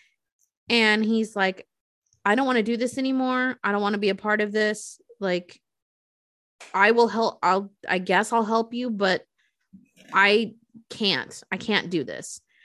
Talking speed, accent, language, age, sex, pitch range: 170 wpm, American, English, 20-39, female, 190-235 Hz